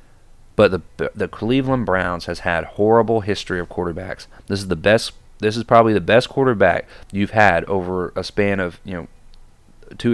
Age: 30-49